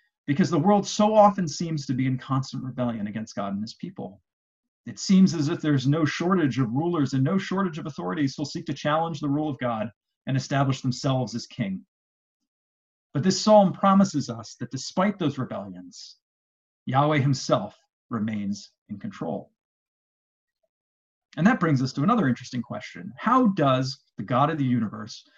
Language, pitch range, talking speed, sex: English, 130-190 Hz, 170 wpm, male